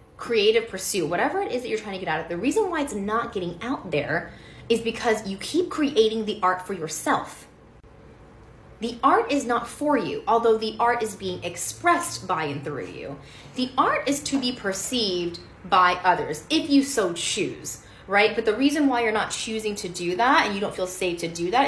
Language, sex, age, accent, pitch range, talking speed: English, female, 20-39, American, 180-260 Hz, 210 wpm